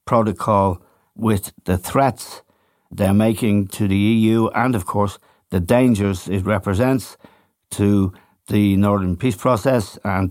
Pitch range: 100-125 Hz